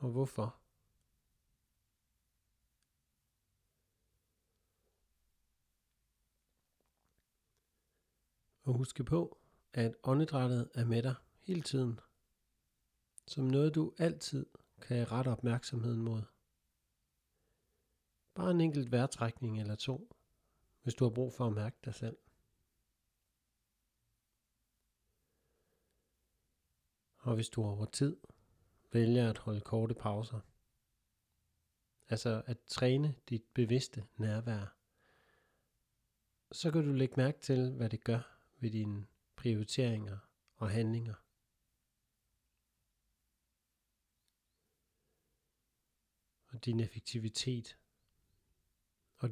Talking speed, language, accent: 85 wpm, Danish, native